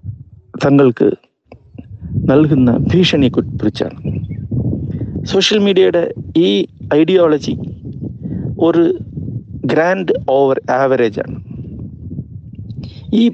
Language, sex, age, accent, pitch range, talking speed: Malayalam, male, 50-69, native, 125-175 Hz, 55 wpm